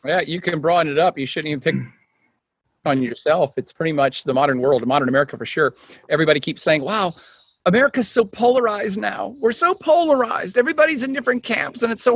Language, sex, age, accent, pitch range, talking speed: English, male, 40-59, American, 140-225 Hz, 200 wpm